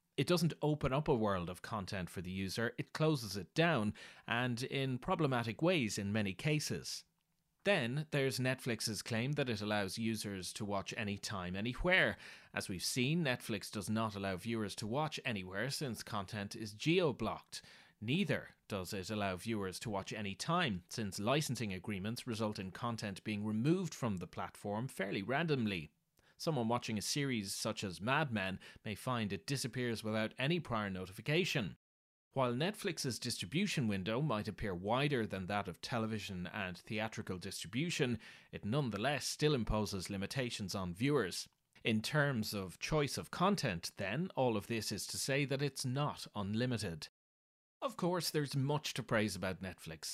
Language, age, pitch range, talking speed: English, 30-49, 100-140 Hz, 160 wpm